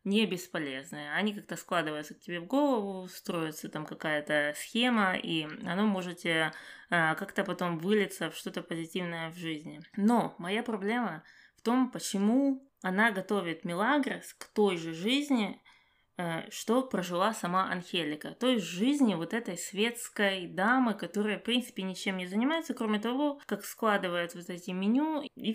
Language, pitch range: Russian, 175-235 Hz